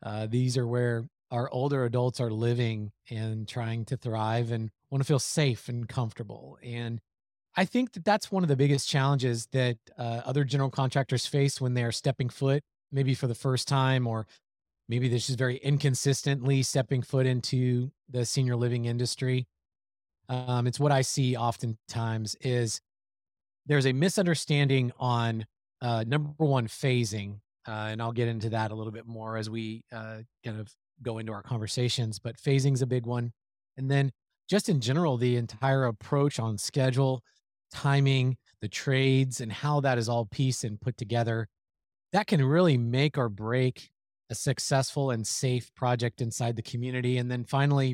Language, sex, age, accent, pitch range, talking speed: English, male, 30-49, American, 115-135 Hz, 170 wpm